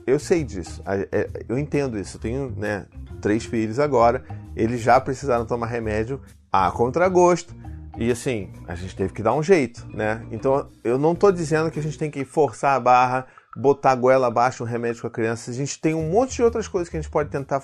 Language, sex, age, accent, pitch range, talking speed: Portuguese, male, 30-49, Brazilian, 120-170 Hz, 220 wpm